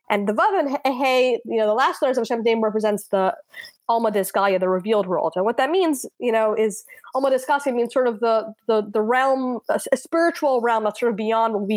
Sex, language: female, English